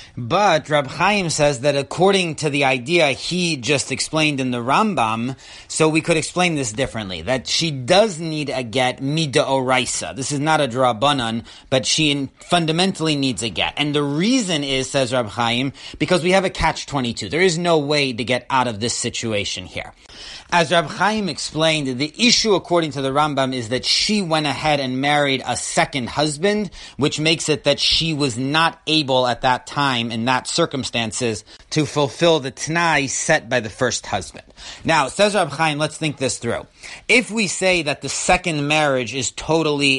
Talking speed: 185 wpm